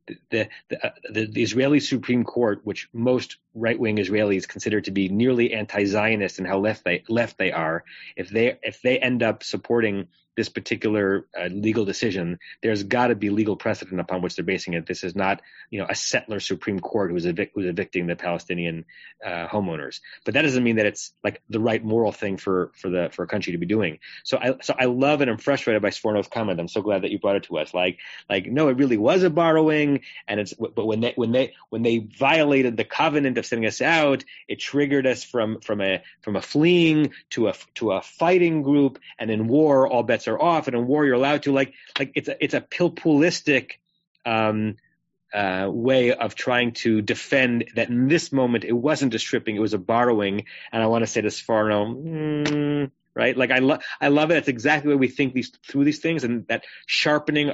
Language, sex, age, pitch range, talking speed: English, male, 30-49, 105-135 Hz, 220 wpm